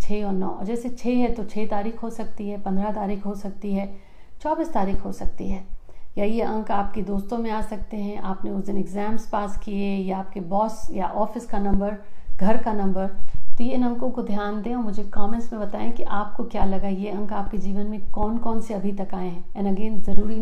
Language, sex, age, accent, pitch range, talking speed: Hindi, female, 50-69, native, 195-225 Hz, 225 wpm